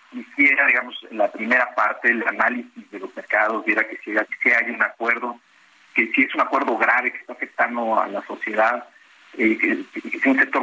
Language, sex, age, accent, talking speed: Spanish, male, 50-69, Mexican, 180 wpm